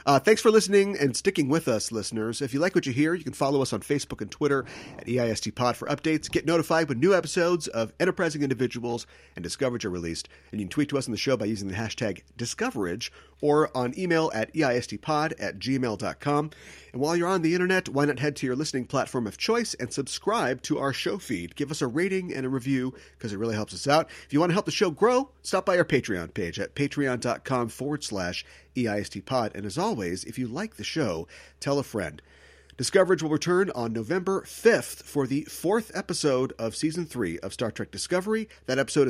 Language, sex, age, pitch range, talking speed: English, male, 40-59, 115-160 Hz, 225 wpm